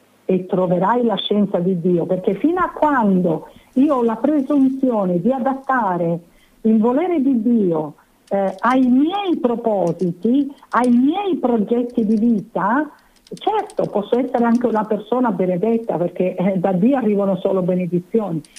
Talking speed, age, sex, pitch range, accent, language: 140 wpm, 50-69, female, 215-295 Hz, native, Italian